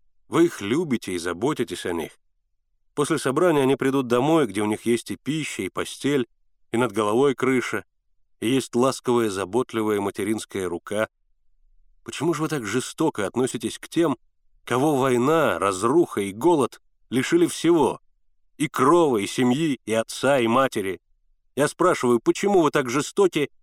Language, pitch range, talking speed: Russian, 105-140 Hz, 150 wpm